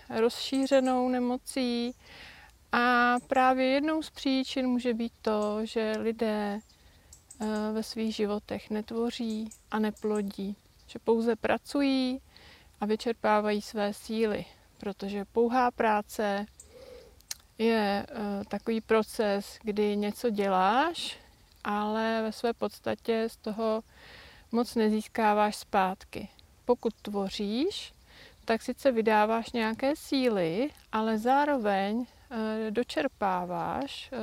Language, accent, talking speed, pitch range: Czech, native, 95 wpm, 210-245 Hz